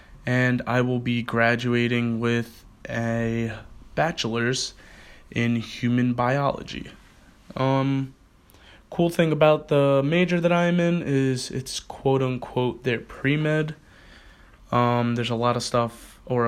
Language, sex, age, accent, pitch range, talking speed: English, male, 20-39, American, 115-135 Hz, 115 wpm